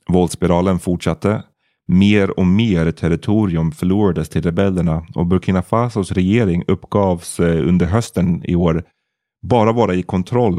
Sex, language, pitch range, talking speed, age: male, Swedish, 85-105 Hz, 125 wpm, 30-49